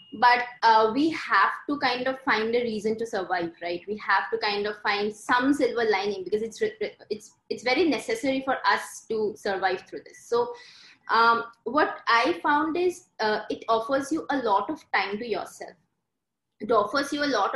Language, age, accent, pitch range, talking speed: English, 20-39, Indian, 215-295 Hz, 190 wpm